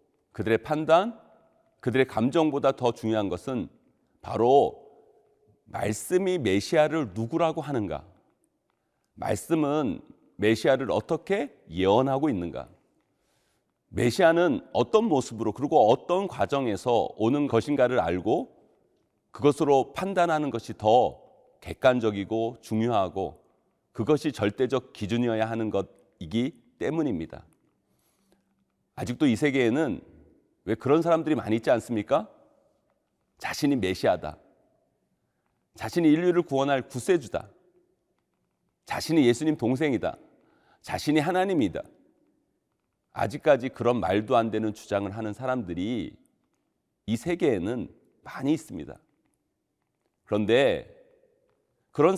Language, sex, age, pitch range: Korean, male, 40-59, 115-170 Hz